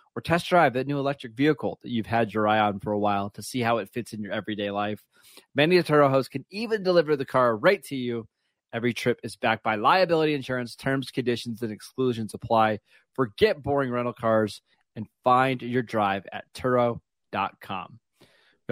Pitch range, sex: 115-135 Hz, male